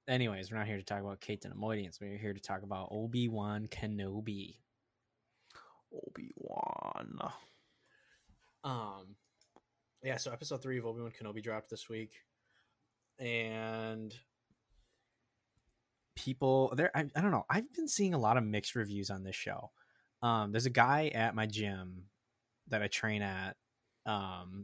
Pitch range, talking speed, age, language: 100-120 Hz, 145 wpm, 20-39, English